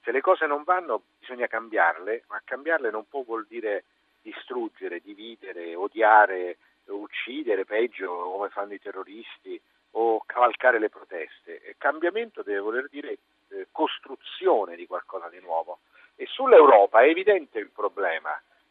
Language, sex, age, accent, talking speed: Italian, male, 50-69, native, 135 wpm